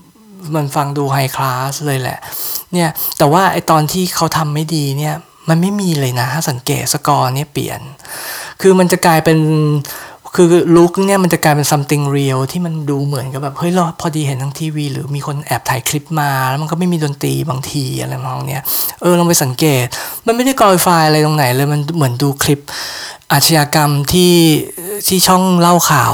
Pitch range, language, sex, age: 140-175 Hz, Thai, male, 20-39